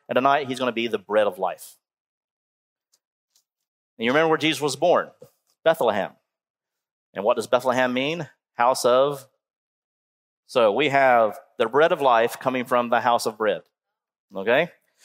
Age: 40-59